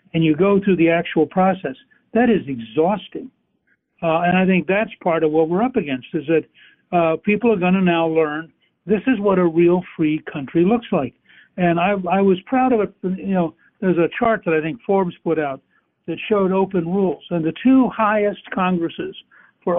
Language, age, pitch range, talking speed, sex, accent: English, 60-79, 165-205 Hz, 200 wpm, male, American